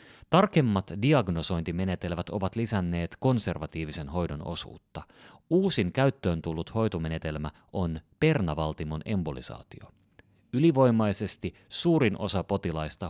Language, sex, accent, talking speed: Finnish, male, native, 80 wpm